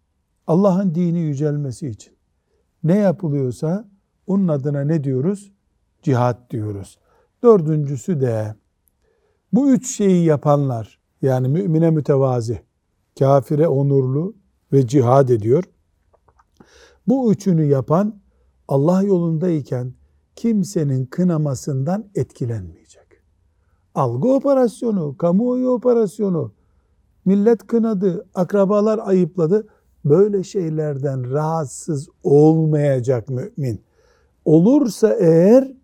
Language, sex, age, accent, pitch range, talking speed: Turkish, male, 60-79, native, 130-195 Hz, 80 wpm